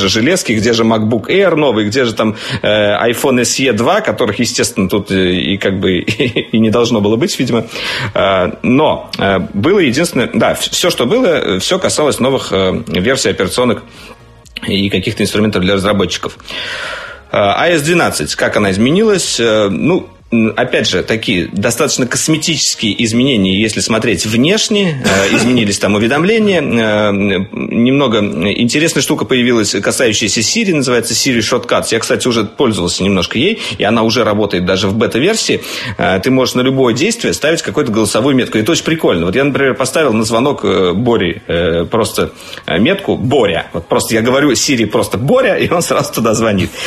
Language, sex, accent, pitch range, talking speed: Russian, male, native, 105-135 Hz, 155 wpm